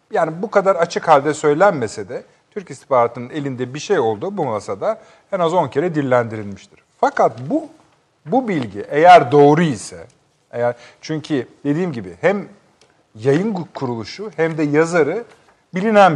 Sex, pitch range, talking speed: male, 120-170 Hz, 140 wpm